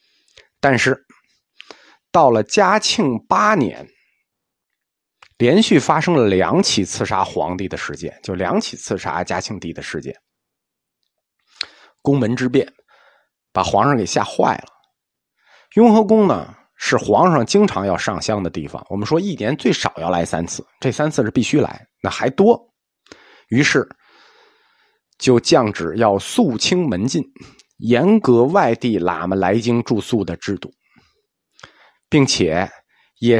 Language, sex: Chinese, male